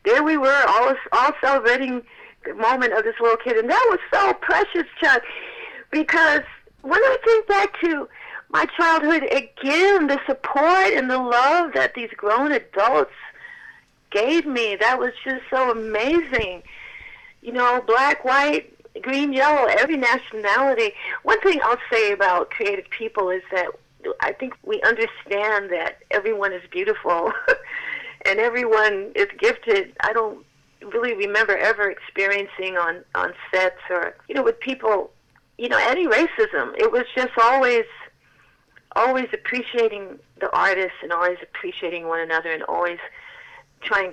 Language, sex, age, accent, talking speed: English, female, 50-69, American, 145 wpm